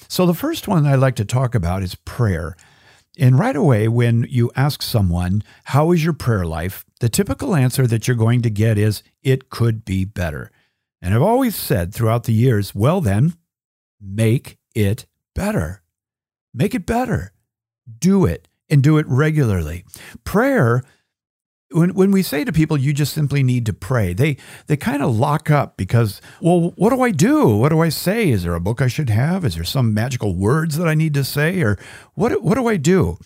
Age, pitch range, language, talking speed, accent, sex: 50-69, 110-150 Hz, English, 195 wpm, American, male